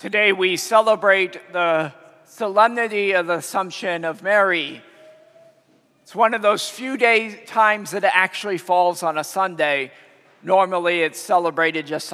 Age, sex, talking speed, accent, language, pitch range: 50-69, male, 140 wpm, American, English, 155-195 Hz